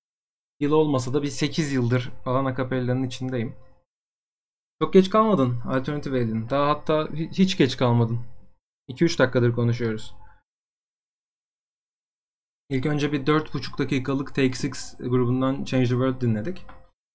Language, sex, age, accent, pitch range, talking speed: Turkish, male, 30-49, native, 125-150 Hz, 115 wpm